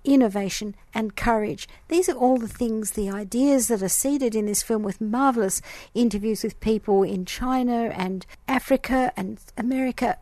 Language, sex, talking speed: English, female, 160 wpm